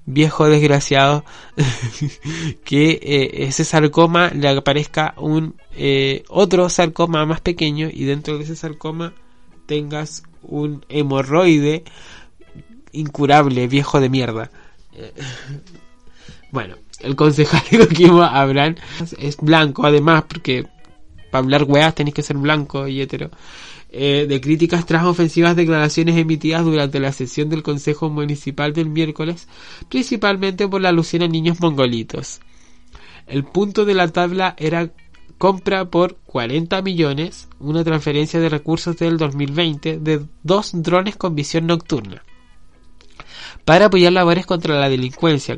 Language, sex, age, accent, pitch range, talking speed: Spanish, male, 20-39, Argentinian, 140-170 Hz, 125 wpm